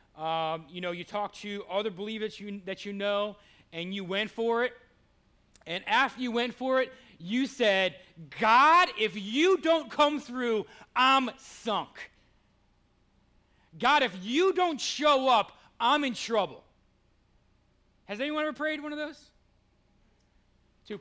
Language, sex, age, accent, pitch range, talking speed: English, male, 30-49, American, 170-260 Hz, 140 wpm